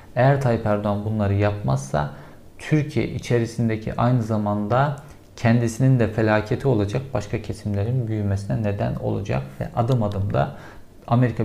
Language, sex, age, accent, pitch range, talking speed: Turkish, male, 50-69, native, 105-130 Hz, 115 wpm